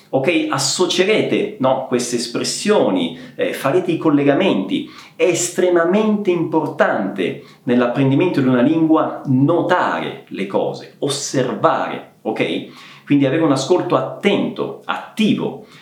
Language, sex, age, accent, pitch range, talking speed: Italian, male, 40-59, native, 145-200 Hz, 100 wpm